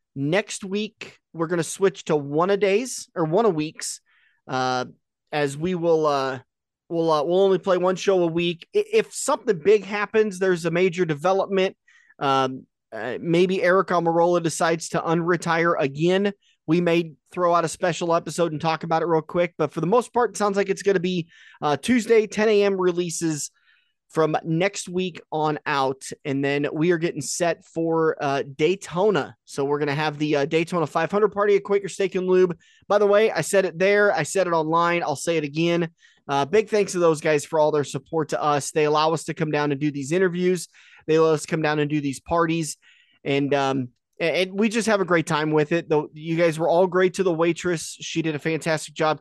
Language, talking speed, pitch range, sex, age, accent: English, 210 wpm, 155-190 Hz, male, 30-49, American